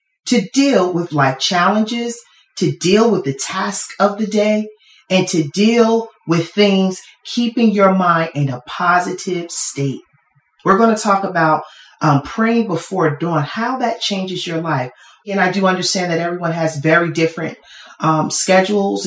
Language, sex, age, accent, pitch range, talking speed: English, female, 40-59, American, 155-205 Hz, 155 wpm